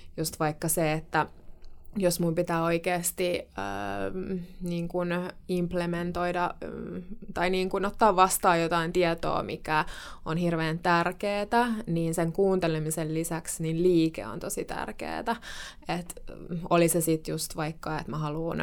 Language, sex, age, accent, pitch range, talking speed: Finnish, female, 20-39, native, 160-175 Hz, 130 wpm